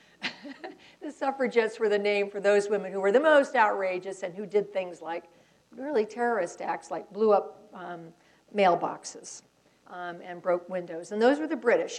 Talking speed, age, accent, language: 175 wpm, 50-69, American, English